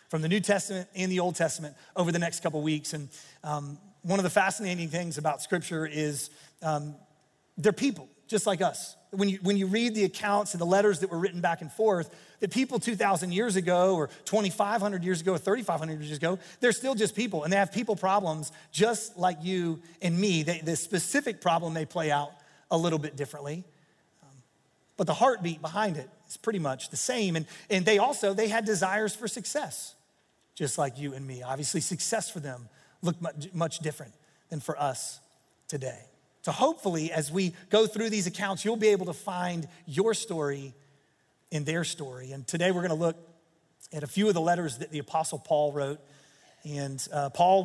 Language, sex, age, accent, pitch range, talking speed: English, male, 30-49, American, 155-195 Hz, 200 wpm